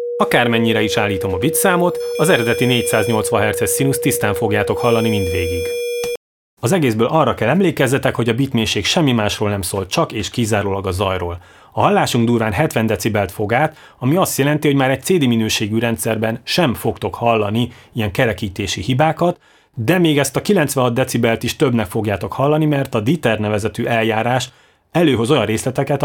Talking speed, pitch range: 165 wpm, 105-140 Hz